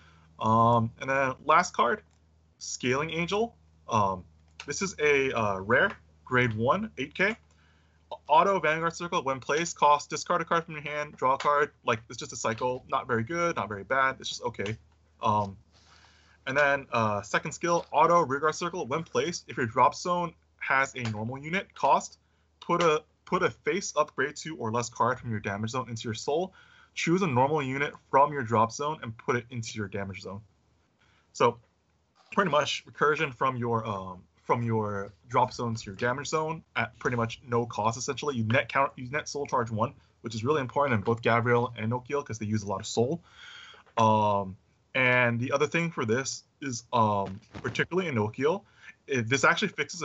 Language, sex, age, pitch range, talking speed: English, male, 20-39, 105-145 Hz, 190 wpm